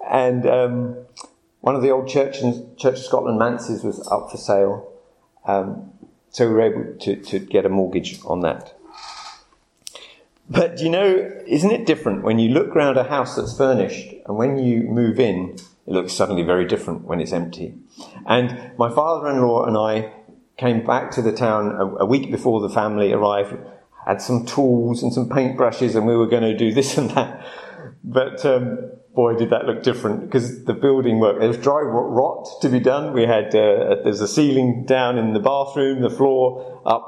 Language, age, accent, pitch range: English, 50-69, British, 115-135 Hz